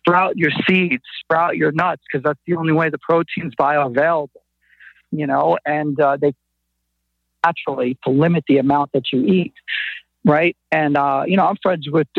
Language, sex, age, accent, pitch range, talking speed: English, male, 50-69, American, 140-170 Hz, 175 wpm